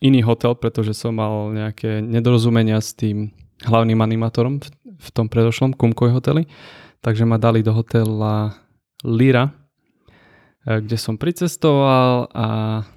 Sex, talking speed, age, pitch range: male, 125 wpm, 20-39, 115-130 Hz